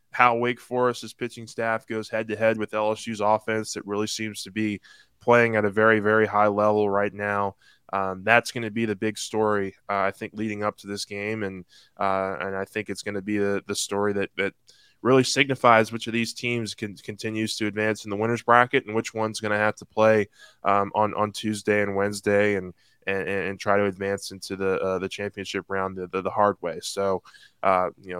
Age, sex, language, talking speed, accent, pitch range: 20-39, male, English, 220 wpm, American, 100-110 Hz